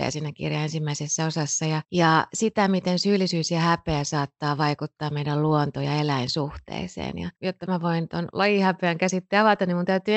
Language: Finnish